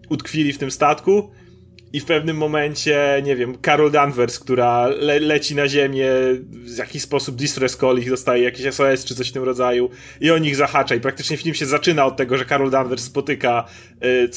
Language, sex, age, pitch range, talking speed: Polish, male, 30-49, 130-160 Hz, 200 wpm